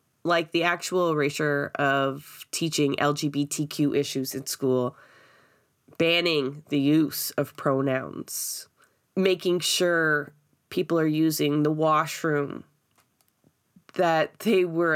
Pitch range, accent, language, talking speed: 145-180 Hz, American, English, 100 wpm